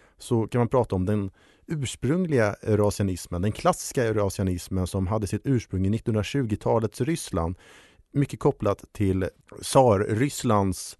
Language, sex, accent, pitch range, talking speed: Swedish, male, Norwegian, 100-130 Hz, 120 wpm